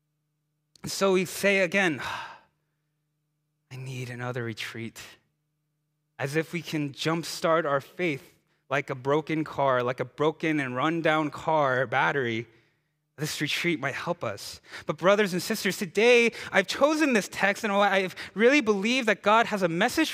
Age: 20-39